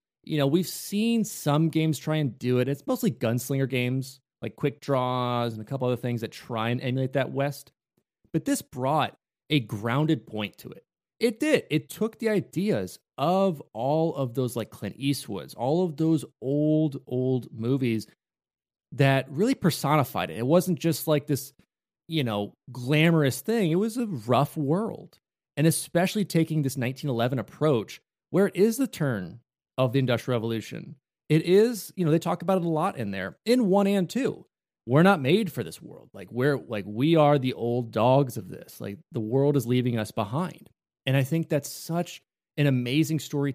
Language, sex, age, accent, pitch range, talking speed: English, male, 30-49, American, 125-165 Hz, 185 wpm